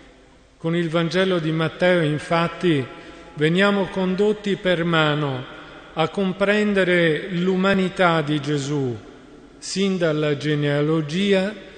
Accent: native